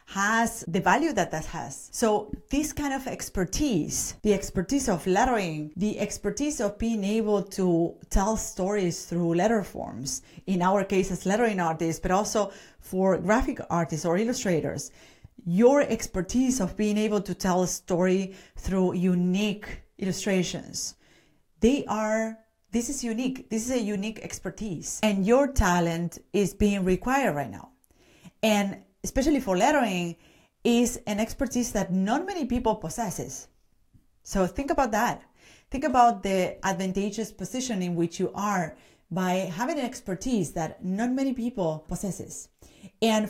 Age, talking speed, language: 30-49, 145 wpm, English